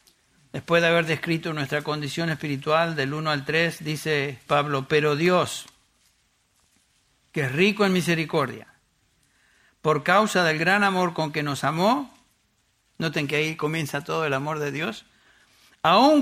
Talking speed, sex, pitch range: 145 wpm, male, 150-185 Hz